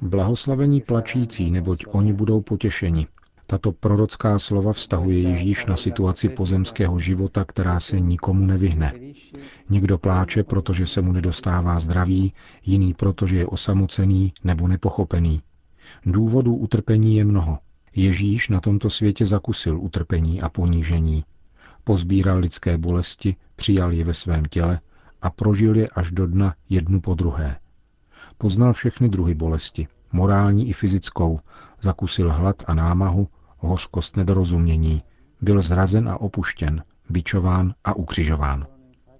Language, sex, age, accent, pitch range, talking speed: Czech, male, 40-59, native, 85-105 Hz, 125 wpm